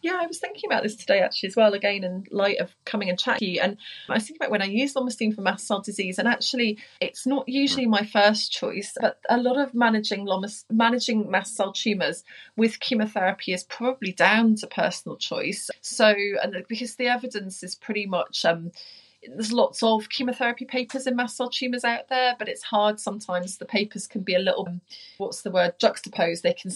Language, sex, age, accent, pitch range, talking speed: English, female, 30-49, British, 180-225 Hz, 205 wpm